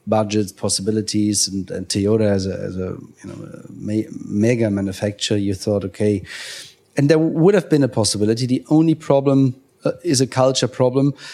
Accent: German